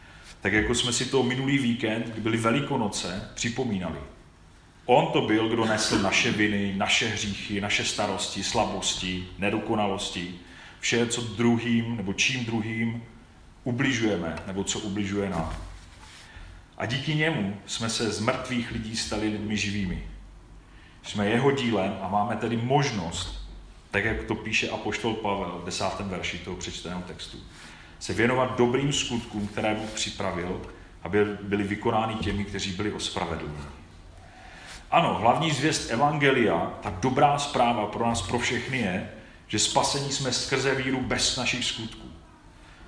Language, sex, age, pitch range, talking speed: Czech, male, 40-59, 95-120 Hz, 140 wpm